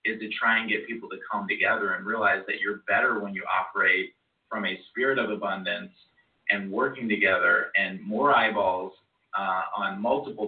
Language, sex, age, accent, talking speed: English, male, 30-49, American, 180 wpm